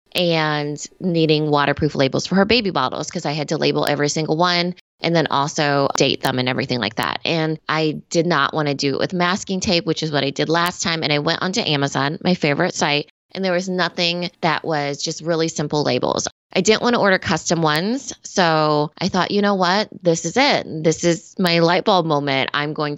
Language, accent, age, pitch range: English, American, 20-39, 150-185 Hz